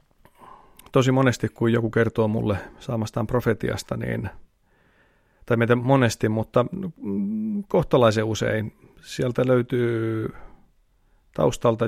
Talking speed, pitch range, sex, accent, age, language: 85 wpm, 110-130 Hz, male, native, 30-49, Finnish